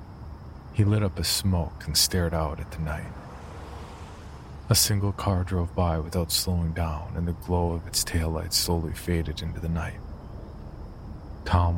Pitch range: 80-95 Hz